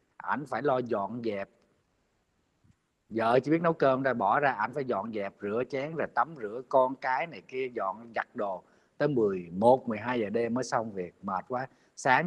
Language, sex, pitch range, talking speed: Vietnamese, male, 125-165 Hz, 190 wpm